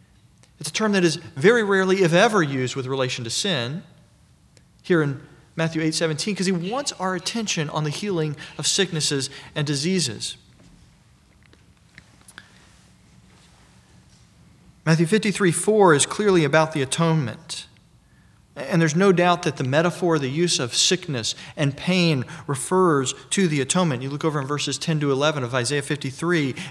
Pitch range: 145-185 Hz